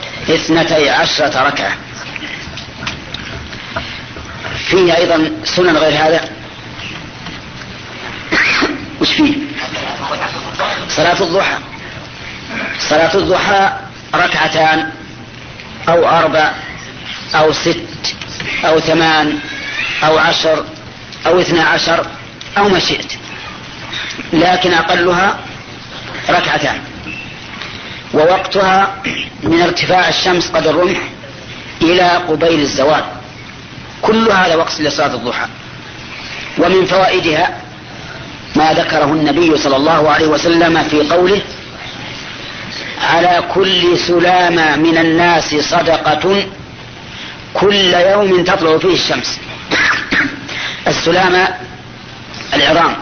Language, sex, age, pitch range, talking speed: Arabic, female, 40-59, 155-185 Hz, 80 wpm